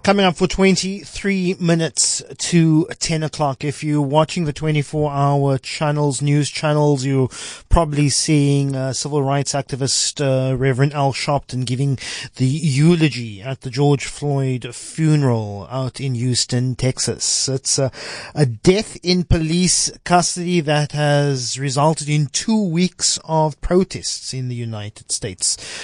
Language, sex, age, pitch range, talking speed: English, male, 30-49, 130-155 Hz, 135 wpm